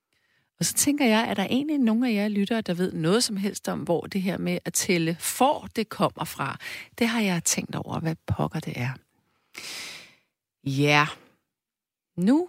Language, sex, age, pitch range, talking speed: Danish, female, 40-59, 160-245 Hz, 185 wpm